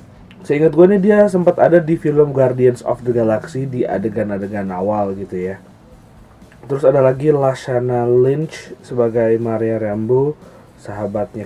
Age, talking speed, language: 30-49, 135 wpm, English